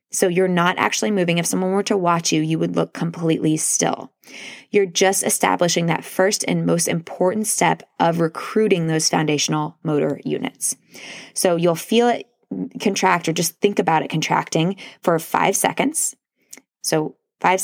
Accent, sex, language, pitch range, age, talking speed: American, female, English, 160-190 Hz, 20-39, 160 wpm